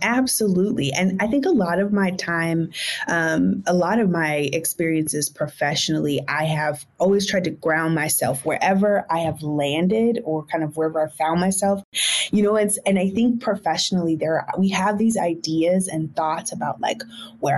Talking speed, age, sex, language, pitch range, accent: 170 wpm, 20-39, female, English, 160-205 Hz, American